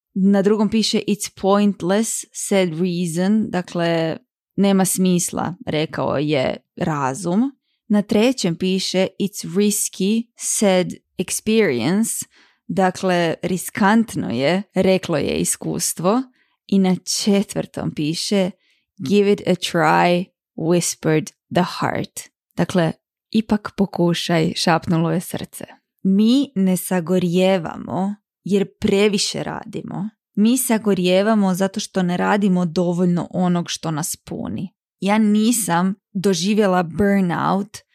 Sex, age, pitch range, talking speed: female, 20-39, 180-210 Hz, 100 wpm